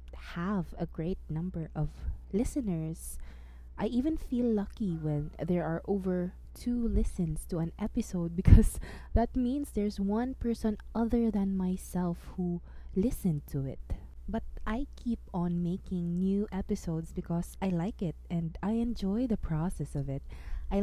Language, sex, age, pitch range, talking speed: English, female, 20-39, 165-210 Hz, 145 wpm